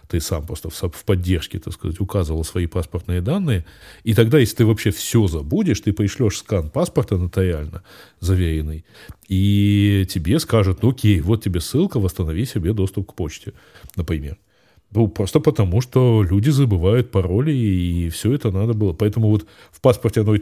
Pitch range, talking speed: 95-110 Hz, 160 wpm